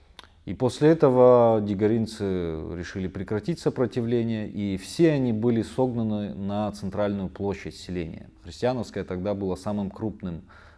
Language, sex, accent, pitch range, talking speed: Russian, male, native, 90-115 Hz, 115 wpm